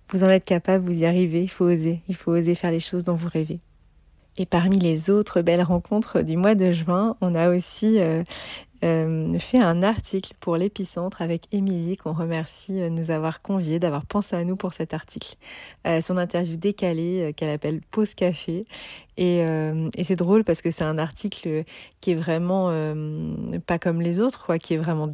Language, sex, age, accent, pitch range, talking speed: French, female, 30-49, French, 160-190 Hz, 205 wpm